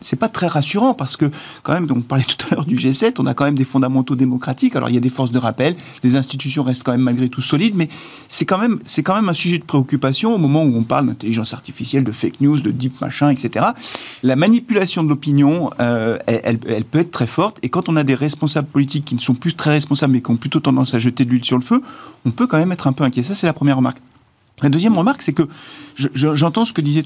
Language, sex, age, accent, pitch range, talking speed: French, male, 40-59, French, 125-155 Hz, 275 wpm